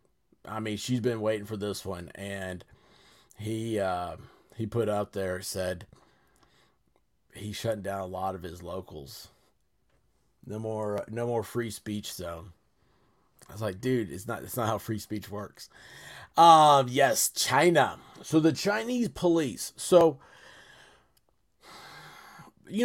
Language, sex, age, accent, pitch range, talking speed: English, male, 30-49, American, 100-130 Hz, 140 wpm